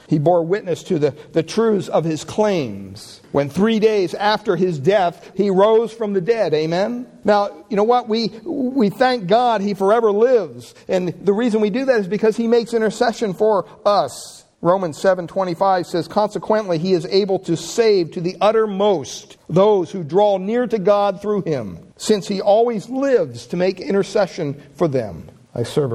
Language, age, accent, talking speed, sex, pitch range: English, 50-69, American, 180 wpm, male, 125-205 Hz